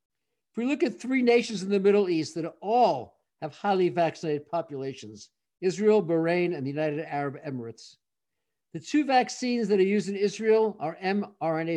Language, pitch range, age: English, 150-205 Hz, 50-69